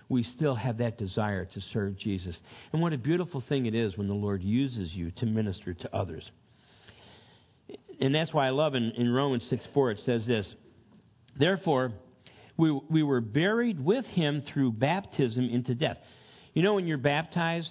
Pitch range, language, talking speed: 120-155 Hz, English, 180 wpm